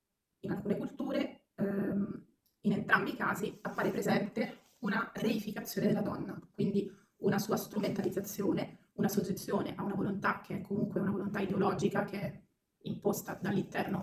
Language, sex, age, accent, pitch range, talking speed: Italian, female, 30-49, native, 195-205 Hz, 135 wpm